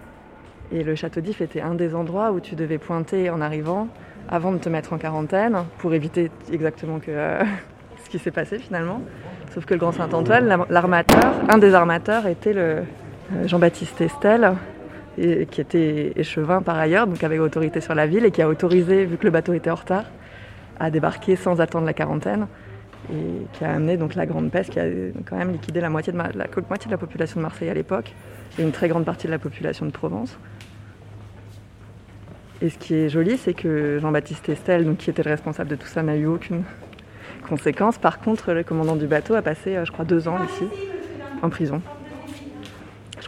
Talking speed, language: 200 wpm, French